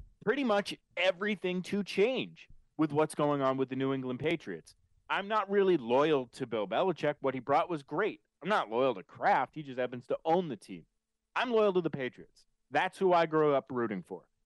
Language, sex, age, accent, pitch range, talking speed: English, male, 30-49, American, 130-175 Hz, 210 wpm